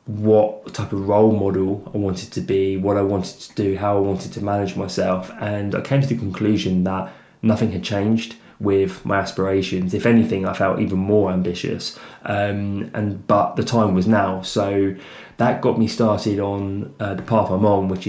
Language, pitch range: English, 95-110 Hz